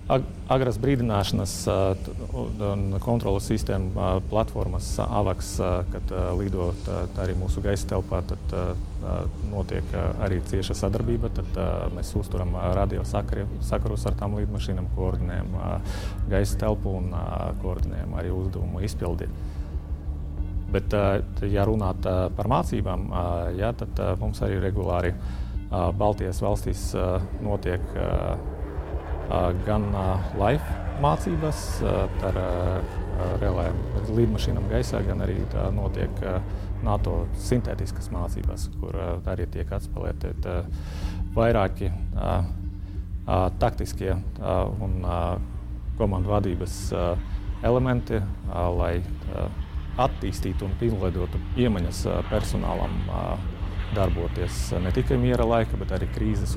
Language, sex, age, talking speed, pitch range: English, male, 30-49, 105 wpm, 90-100 Hz